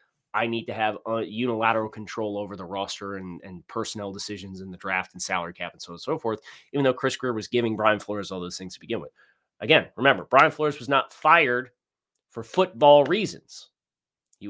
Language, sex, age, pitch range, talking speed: English, male, 30-49, 110-145 Hz, 205 wpm